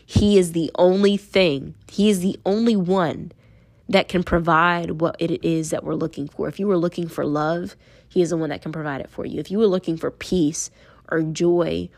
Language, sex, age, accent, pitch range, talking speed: English, female, 20-39, American, 155-185 Hz, 220 wpm